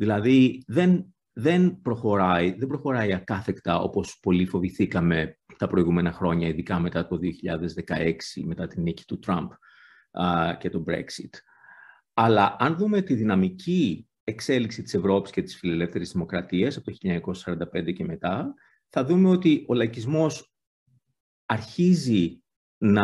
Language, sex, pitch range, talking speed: Greek, male, 100-160 Hz, 120 wpm